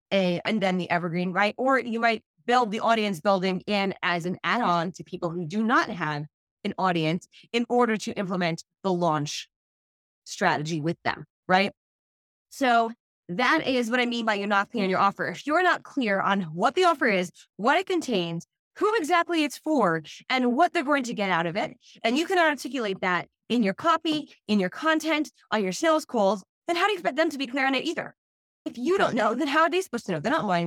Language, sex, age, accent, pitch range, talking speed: English, female, 20-39, American, 175-260 Hz, 220 wpm